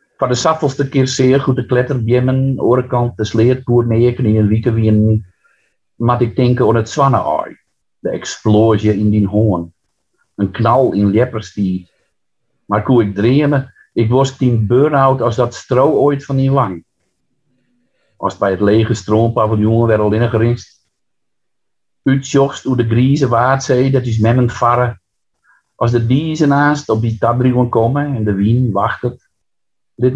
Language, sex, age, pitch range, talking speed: Dutch, male, 50-69, 105-130 Hz, 155 wpm